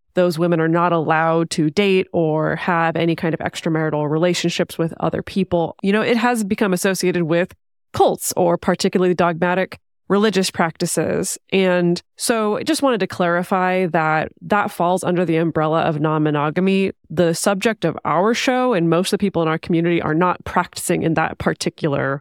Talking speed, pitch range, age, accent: 175 wpm, 170-200 Hz, 20-39, American